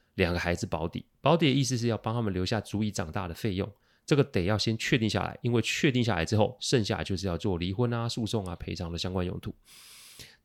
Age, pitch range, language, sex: 30-49, 95-125 Hz, Chinese, male